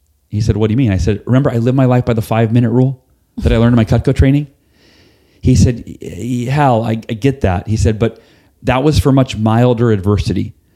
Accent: American